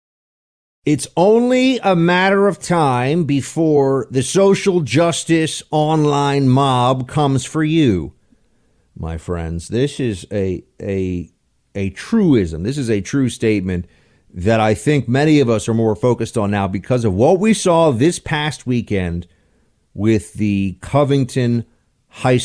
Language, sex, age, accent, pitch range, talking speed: English, male, 50-69, American, 95-140 Hz, 135 wpm